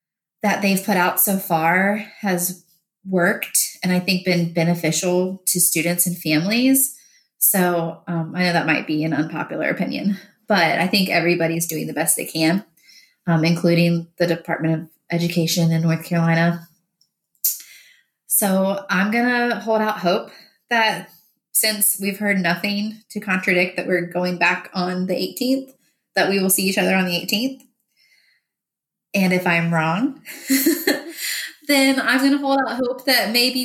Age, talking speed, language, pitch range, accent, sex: 20-39, 155 wpm, English, 175-210 Hz, American, female